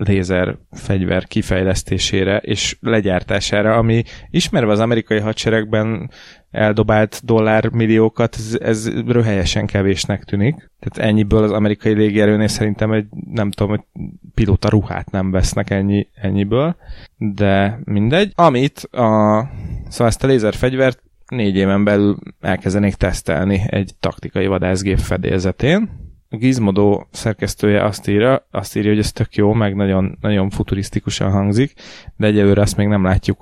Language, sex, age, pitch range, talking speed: Hungarian, male, 20-39, 95-110 Hz, 125 wpm